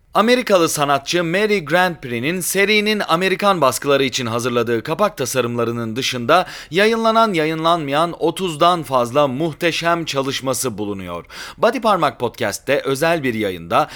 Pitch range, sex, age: 120-180 Hz, male, 30-49